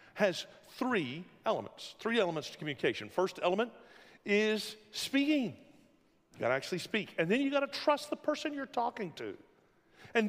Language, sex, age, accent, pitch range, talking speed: English, male, 50-69, American, 175-240 Hz, 165 wpm